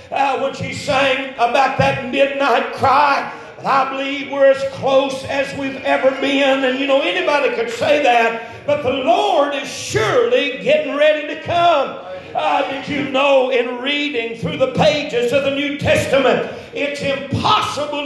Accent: American